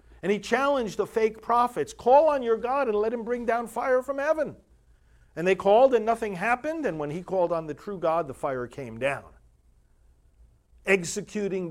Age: 50-69